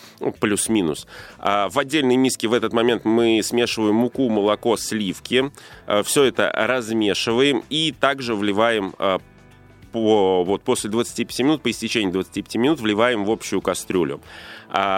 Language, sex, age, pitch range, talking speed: Russian, male, 20-39, 110-135 Hz, 120 wpm